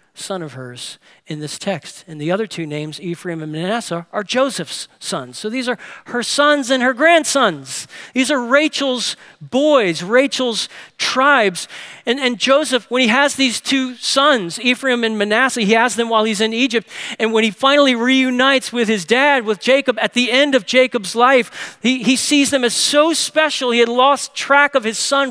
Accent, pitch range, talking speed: American, 210-260 Hz, 190 wpm